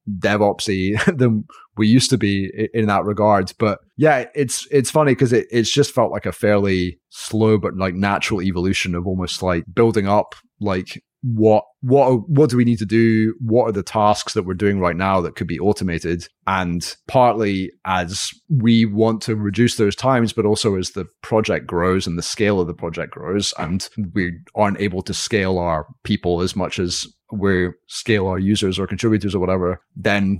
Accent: British